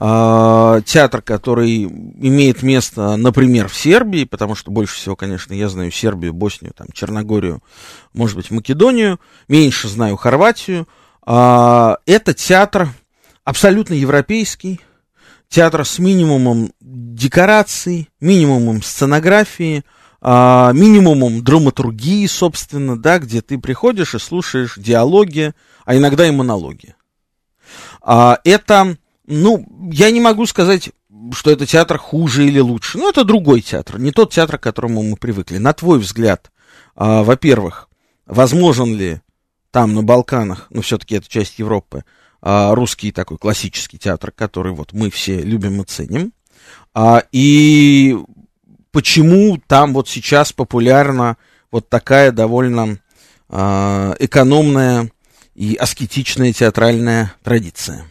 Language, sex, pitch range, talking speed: Russian, male, 110-155 Hz, 115 wpm